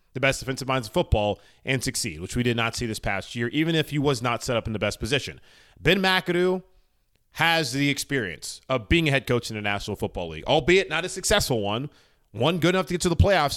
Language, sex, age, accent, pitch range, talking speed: English, male, 30-49, American, 115-155 Hz, 245 wpm